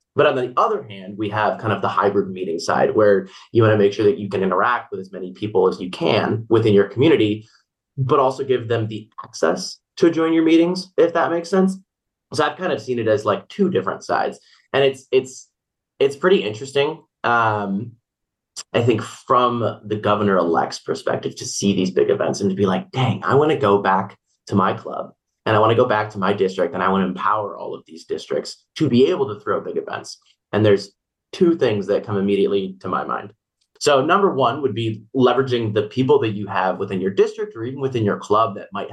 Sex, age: male, 30-49